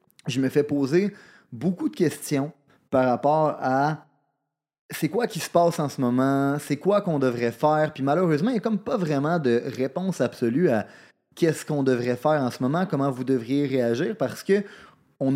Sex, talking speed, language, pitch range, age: male, 190 wpm, French, 125-170 Hz, 30-49